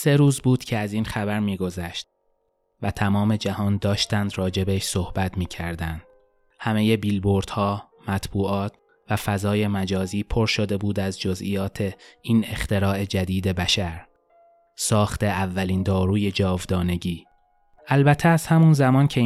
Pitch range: 95-110 Hz